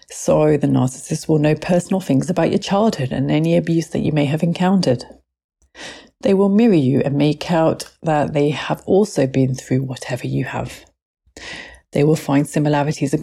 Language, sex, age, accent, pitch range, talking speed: English, female, 30-49, British, 135-190 Hz, 175 wpm